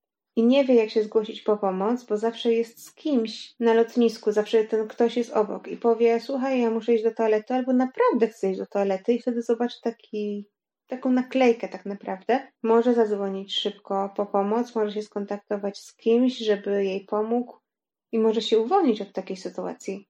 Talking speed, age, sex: 180 wpm, 30-49, female